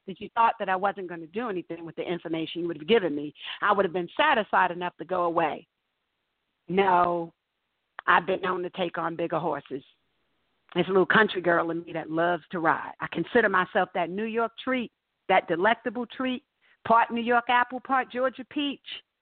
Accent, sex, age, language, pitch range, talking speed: American, female, 50-69, English, 185-260 Hz, 200 wpm